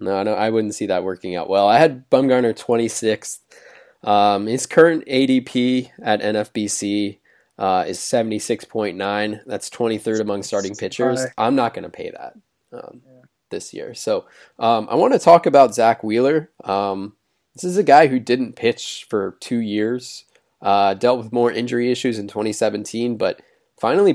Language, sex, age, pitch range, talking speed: English, male, 20-39, 100-120 Hz, 165 wpm